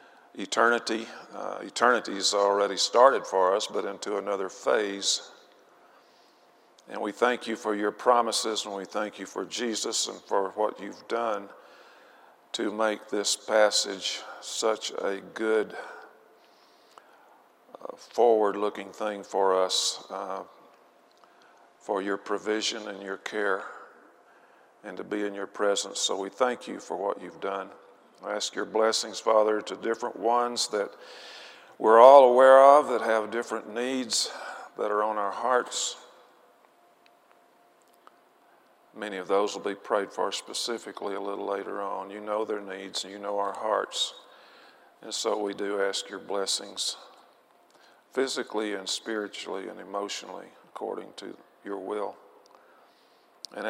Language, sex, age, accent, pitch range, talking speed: English, male, 50-69, American, 100-115 Hz, 135 wpm